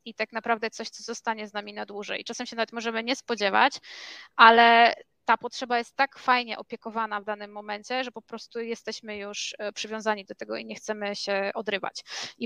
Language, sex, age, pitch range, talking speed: Polish, female, 20-39, 205-235 Hz, 195 wpm